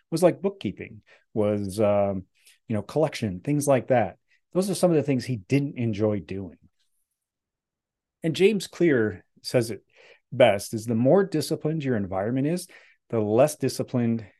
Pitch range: 110-150 Hz